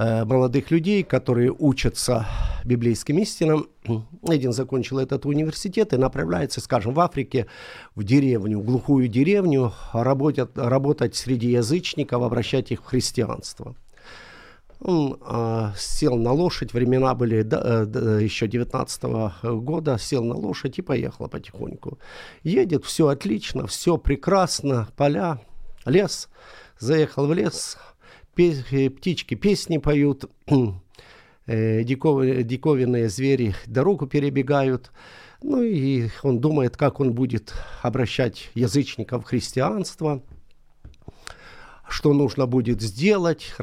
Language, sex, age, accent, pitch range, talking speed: Ukrainian, male, 50-69, native, 120-150 Hz, 110 wpm